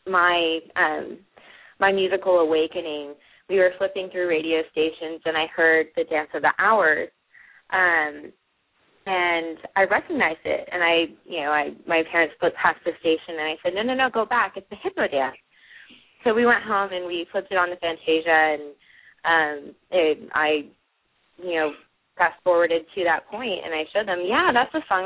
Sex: female